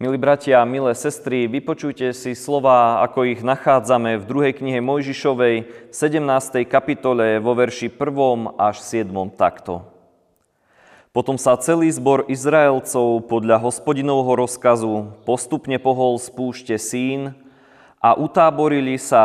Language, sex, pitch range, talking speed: Slovak, male, 110-135 Hz, 115 wpm